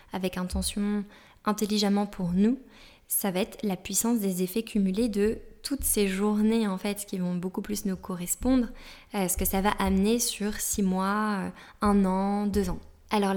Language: French